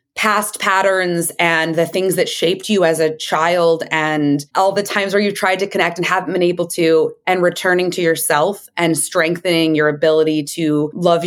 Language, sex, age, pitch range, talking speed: English, female, 20-39, 170-240 Hz, 185 wpm